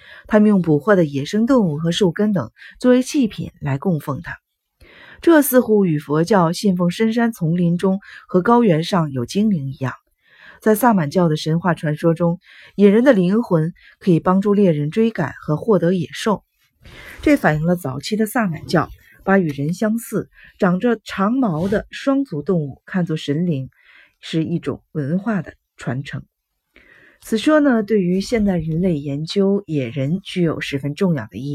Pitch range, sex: 155-215 Hz, female